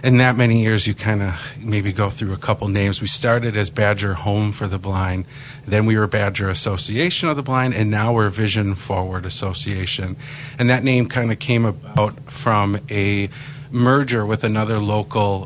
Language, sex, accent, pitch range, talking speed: English, male, American, 100-130 Hz, 185 wpm